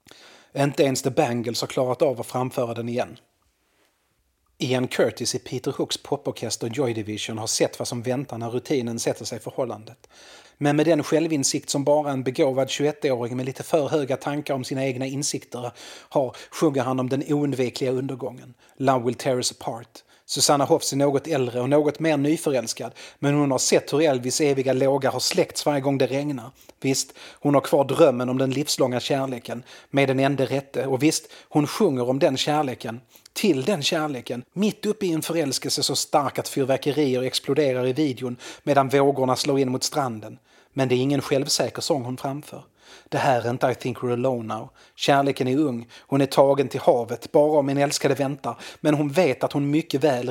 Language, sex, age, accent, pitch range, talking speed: Swedish, male, 30-49, native, 125-145 Hz, 190 wpm